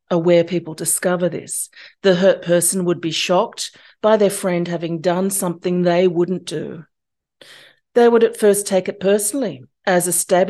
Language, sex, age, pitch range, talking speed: English, female, 40-59, 175-215 Hz, 165 wpm